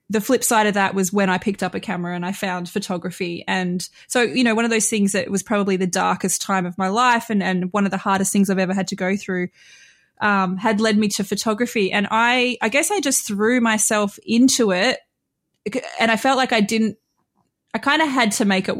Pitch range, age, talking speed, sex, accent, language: 190-230 Hz, 20-39, 240 wpm, female, Australian, English